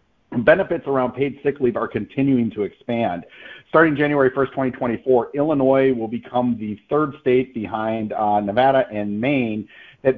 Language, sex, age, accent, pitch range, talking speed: English, male, 50-69, American, 115-135 Hz, 145 wpm